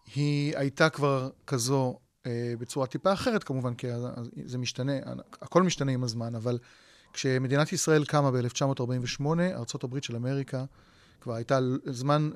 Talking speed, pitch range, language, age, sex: 130 wpm, 125-160 Hz, Hebrew, 30-49, male